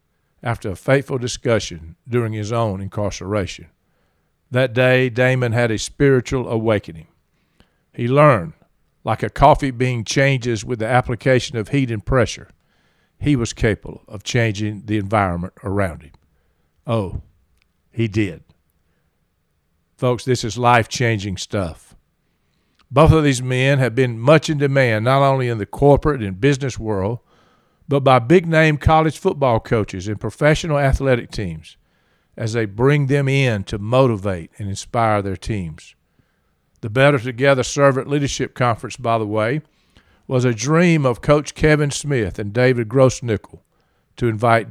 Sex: male